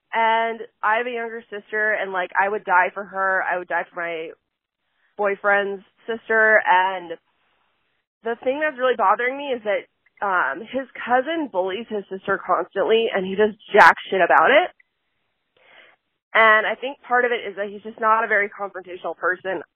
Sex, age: female, 20-39